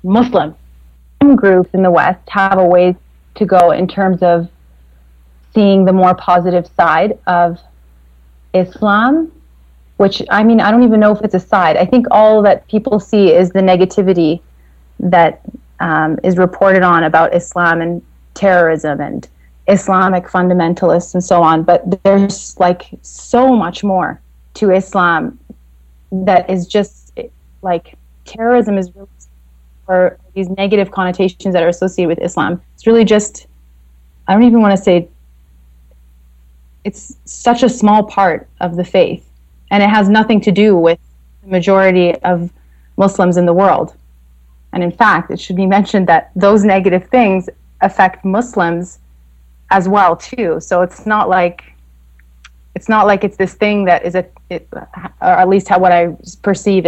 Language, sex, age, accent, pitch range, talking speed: English, female, 30-49, American, 155-200 Hz, 155 wpm